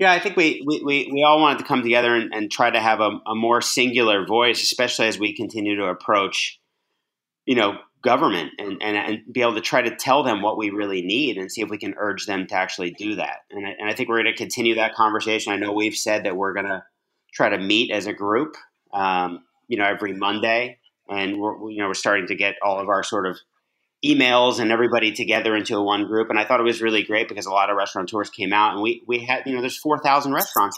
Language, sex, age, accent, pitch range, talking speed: English, male, 30-49, American, 105-120 Hz, 255 wpm